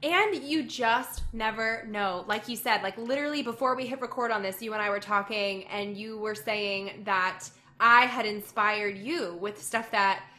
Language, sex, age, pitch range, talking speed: English, female, 20-39, 220-305 Hz, 190 wpm